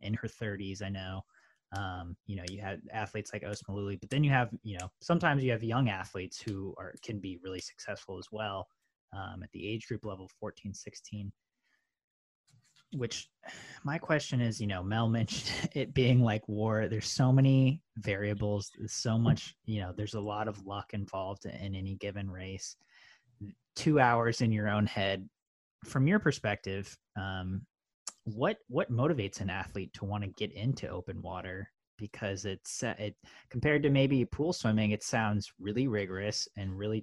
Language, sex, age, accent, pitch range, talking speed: English, male, 20-39, American, 95-115 Hz, 175 wpm